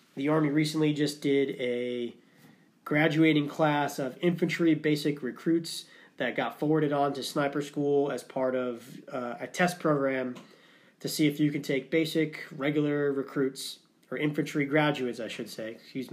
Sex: male